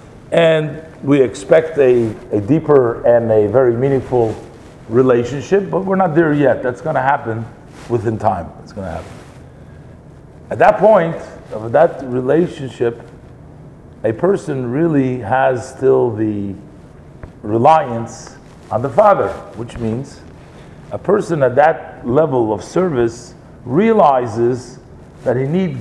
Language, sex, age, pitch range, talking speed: English, male, 50-69, 120-165 Hz, 130 wpm